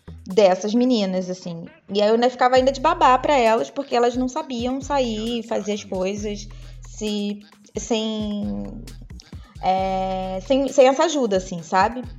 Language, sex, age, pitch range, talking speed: Portuguese, female, 20-39, 205-255 Hz, 150 wpm